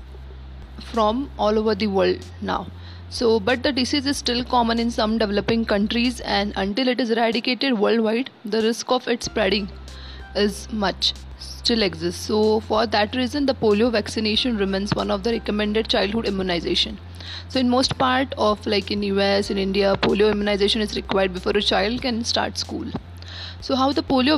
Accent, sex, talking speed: Indian, female, 170 wpm